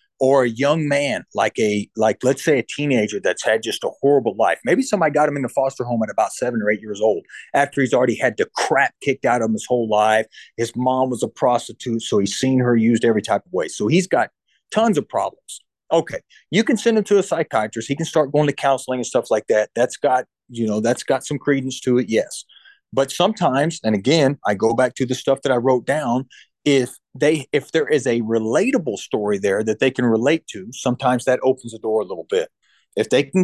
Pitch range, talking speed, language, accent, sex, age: 115-155 Hz, 240 wpm, English, American, male, 30-49